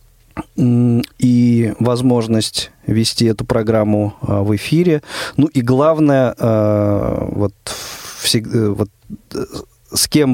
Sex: male